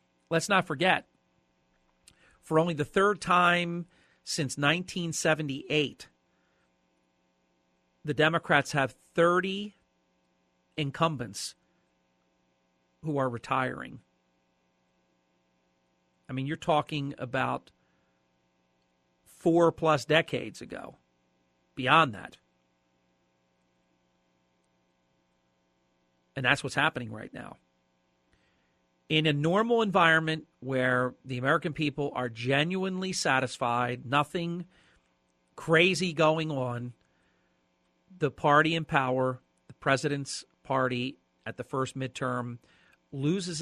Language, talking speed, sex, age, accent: English, 85 wpm, male, 50-69, American